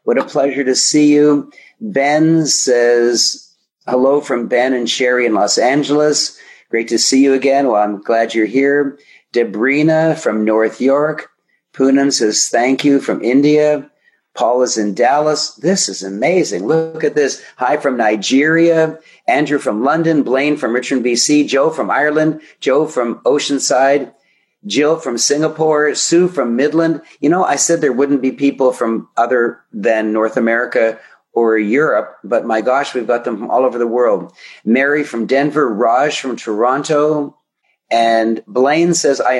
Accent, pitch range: American, 120-155 Hz